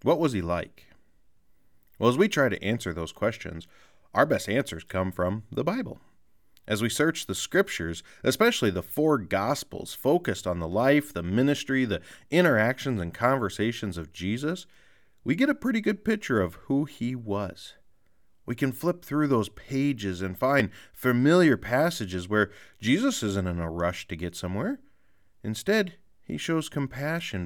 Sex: male